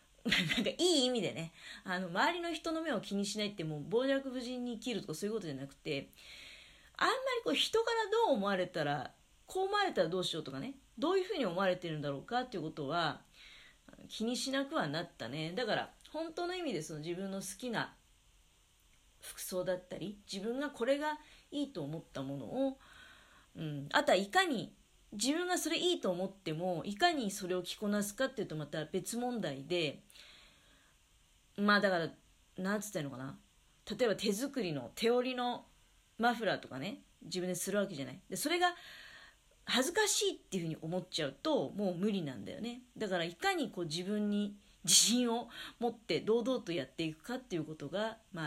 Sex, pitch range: female, 165-260 Hz